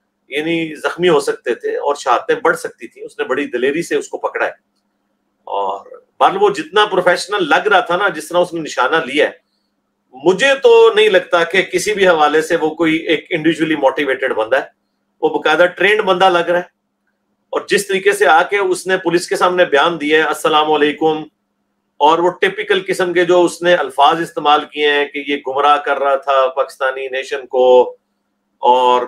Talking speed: 140 wpm